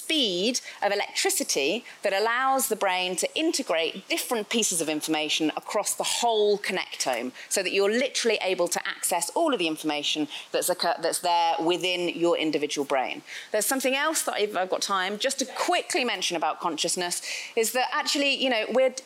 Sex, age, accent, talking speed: female, 30-49, British, 180 wpm